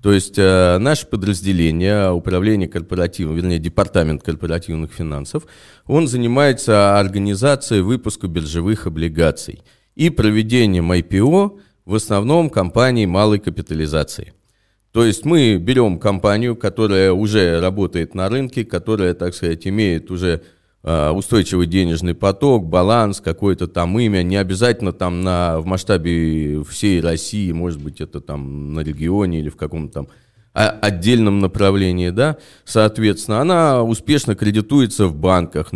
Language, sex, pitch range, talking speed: Russian, male, 90-115 Hz, 125 wpm